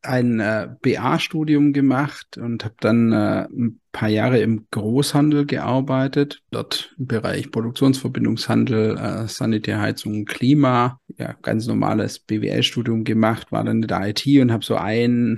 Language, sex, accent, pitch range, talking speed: German, male, German, 115-135 Hz, 135 wpm